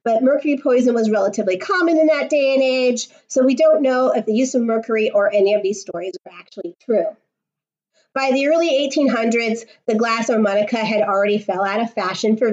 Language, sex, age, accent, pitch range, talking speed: English, female, 30-49, American, 215-290 Hz, 200 wpm